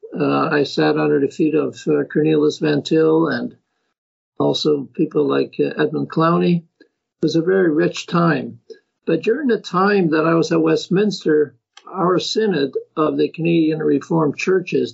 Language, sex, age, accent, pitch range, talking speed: English, male, 60-79, American, 150-175 Hz, 160 wpm